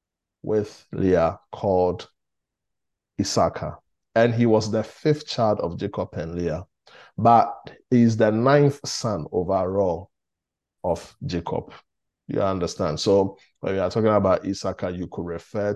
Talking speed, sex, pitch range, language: 130 wpm, male, 90-115 Hz, English